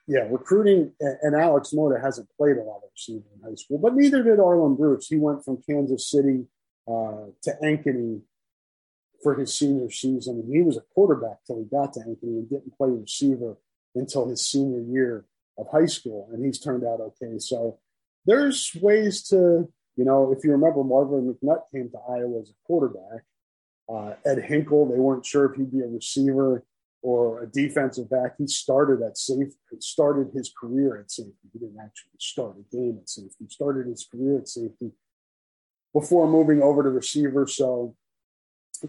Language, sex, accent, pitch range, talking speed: English, male, American, 120-150 Hz, 185 wpm